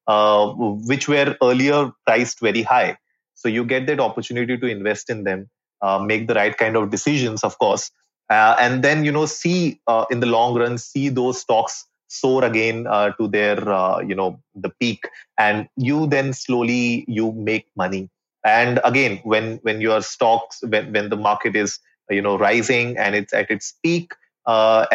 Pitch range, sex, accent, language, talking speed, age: 105-125 Hz, male, Indian, English, 185 wpm, 30-49